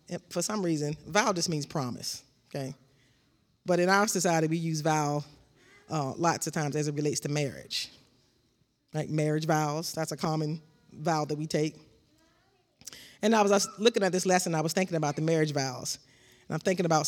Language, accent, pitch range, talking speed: English, American, 145-185 Hz, 185 wpm